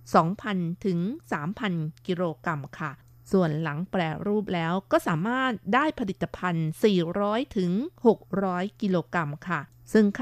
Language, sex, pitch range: Thai, female, 170-215 Hz